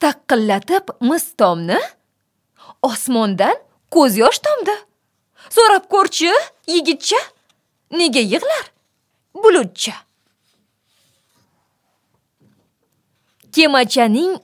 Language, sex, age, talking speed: English, female, 20-39, 60 wpm